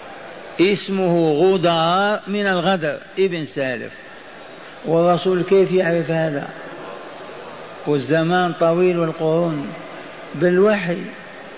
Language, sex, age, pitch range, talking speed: Arabic, male, 50-69, 170-195 Hz, 75 wpm